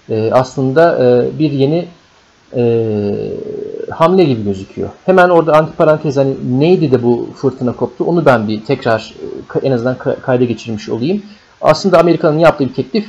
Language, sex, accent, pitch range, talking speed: Turkish, male, native, 125-175 Hz, 135 wpm